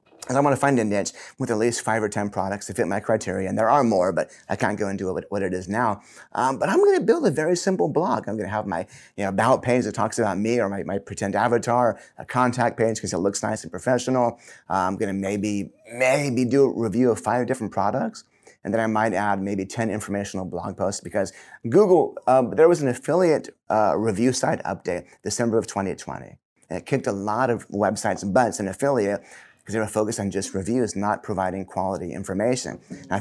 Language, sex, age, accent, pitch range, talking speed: English, male, 30-49, American, 95-120 Hz, 235 wpm